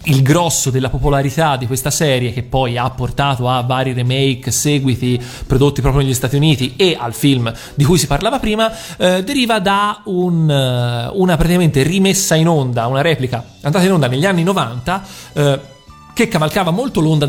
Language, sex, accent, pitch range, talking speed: Italian, male, native, 125-155 Hz, 170 wpm